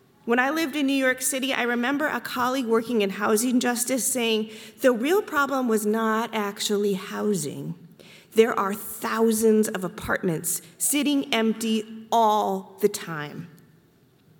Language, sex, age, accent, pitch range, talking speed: English, female, 40-59, American, 185-245 Hz, 140 wpm